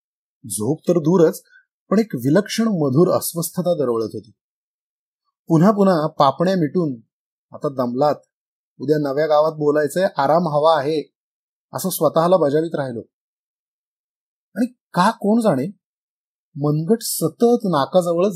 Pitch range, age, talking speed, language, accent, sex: 140-195 Hz, 30-49, 110 wpm, Marathi, native, male